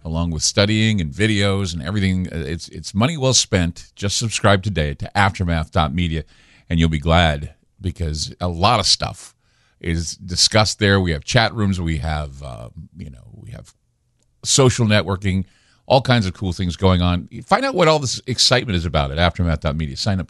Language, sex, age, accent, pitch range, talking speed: English, male, 50-69, American, 90-130 Hz, 180 wpm